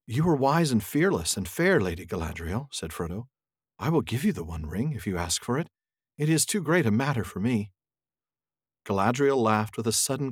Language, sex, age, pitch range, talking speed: English, male, 50-69, 100-145 Hz, 210 wpm